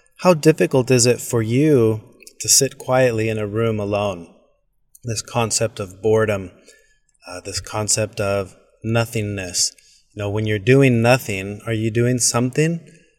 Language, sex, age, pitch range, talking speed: English, male, 30-49, 110-130 Hz, 145 wpm